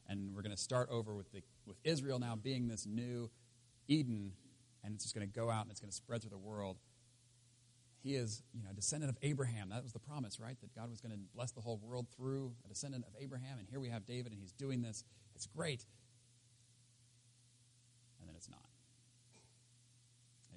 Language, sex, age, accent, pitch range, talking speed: English, male, 40-59, American, 110-120 Hz, 215 wpm